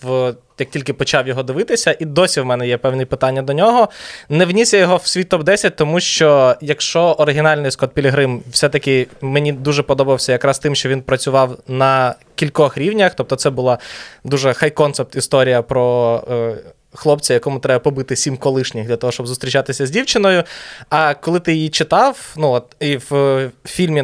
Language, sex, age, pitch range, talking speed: Ukrainian, male, 20-39, 130-150 Hz, 180 wpm